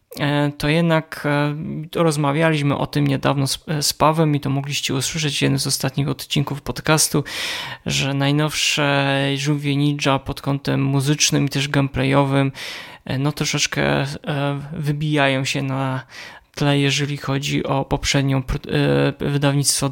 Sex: male